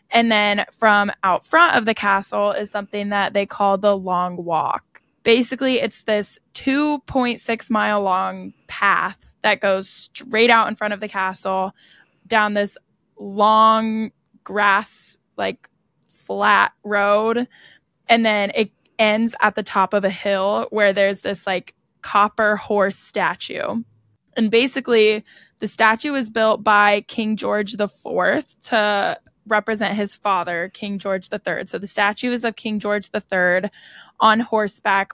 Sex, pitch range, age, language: female, 195-220 Hz, 10-29, English